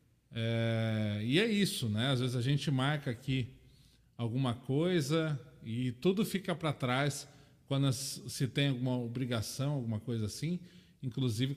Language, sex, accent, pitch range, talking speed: Portuguese, male, Brazilian, 130-170 Hz, 140 wpm